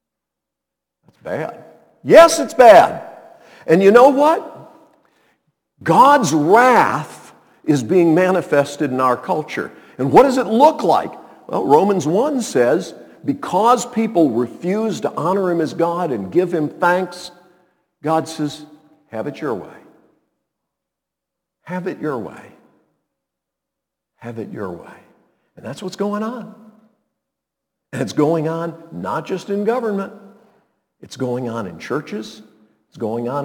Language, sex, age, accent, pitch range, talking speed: English, male, 50-69, American, 145-195 Hz, 130 wpm